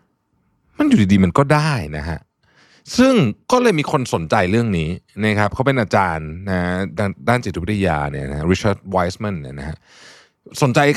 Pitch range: 85-135 Hz